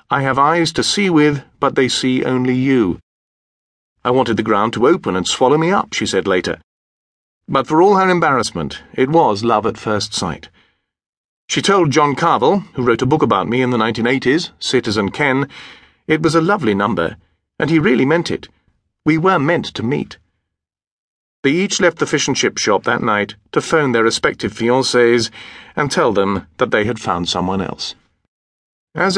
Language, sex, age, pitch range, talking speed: English, male, 40-59, 105-155 Hz, 180 wpm